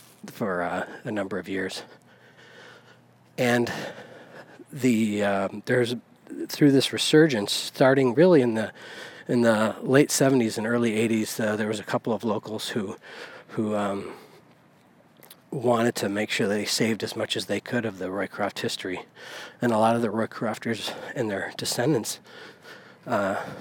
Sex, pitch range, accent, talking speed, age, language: male, 105-120 Hz, American, 150 wpm, 40-59, English